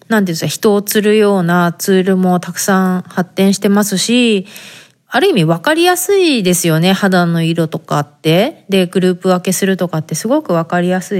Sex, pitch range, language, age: female, 175-230 Hz, Japanese, 20-39